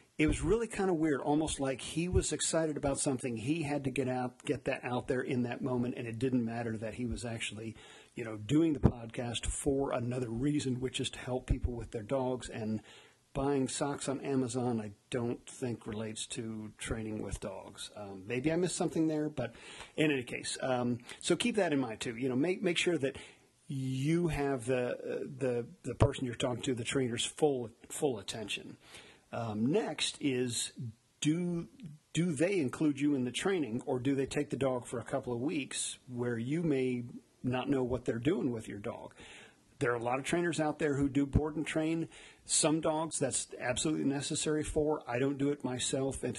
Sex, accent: male, American